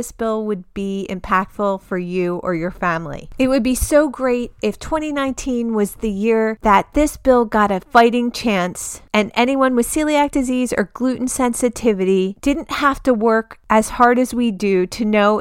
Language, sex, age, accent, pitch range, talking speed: English, female, 30-49, American, 210-275 Hz, 175 wpm